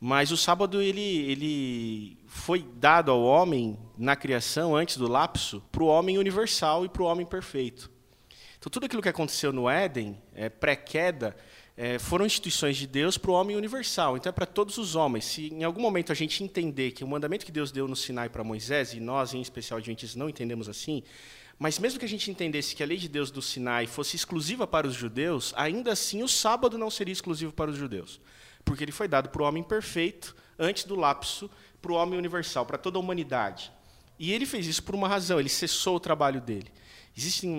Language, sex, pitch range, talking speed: Portuguese, male, 130-170 Hz, 210 wpm